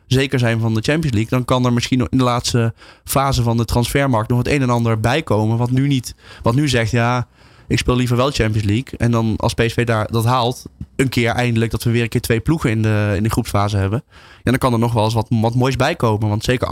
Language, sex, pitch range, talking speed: Dutch, male, 110-125 Hz, 260 wpm